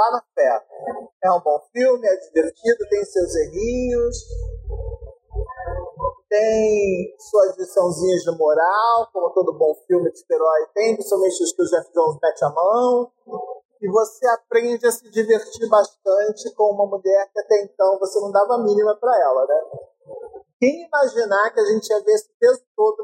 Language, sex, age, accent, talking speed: Portuguese, male, 40-59, Brazilian, 165 wpm